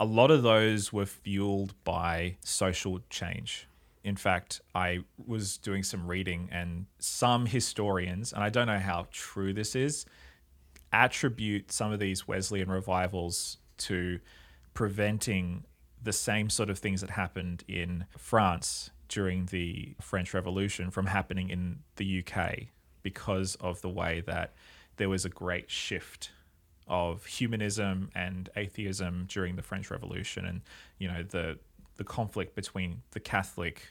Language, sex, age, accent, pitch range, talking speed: English, male, 20-39, Australian, 90-105 Hz, 140 wpm